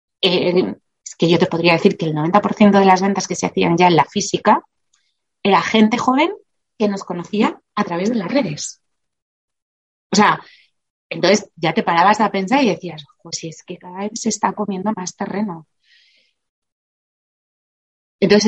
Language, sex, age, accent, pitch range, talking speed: Spanish, female, 30-49, Spanish, 170-215 Hz, 170 wpm